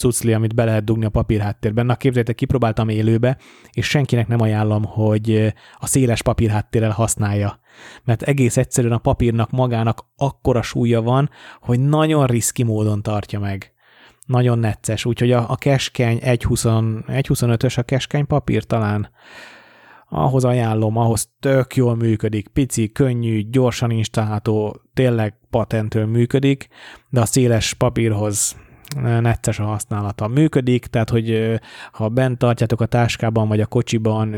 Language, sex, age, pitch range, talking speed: Hungarian, male, 30-49, 110-125 Hz, 135 wpm